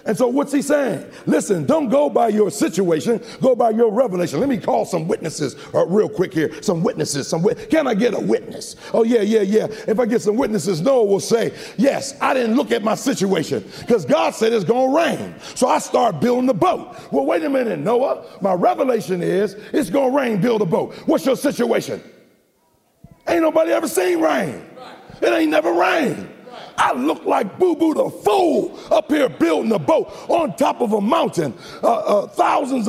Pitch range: 220-300 Hz